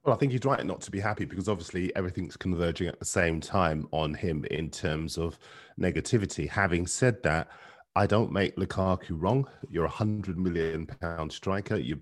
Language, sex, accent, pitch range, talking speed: English, male, British, 80-105 Hz, 185 wpm